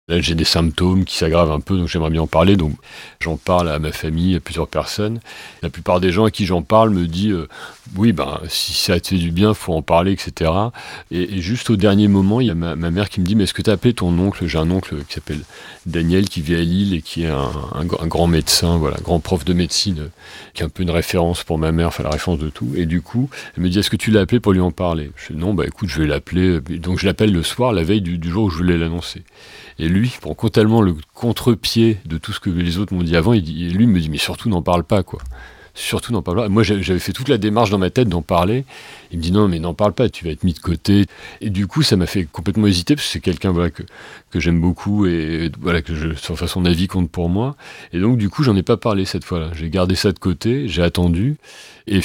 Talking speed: 280 wpm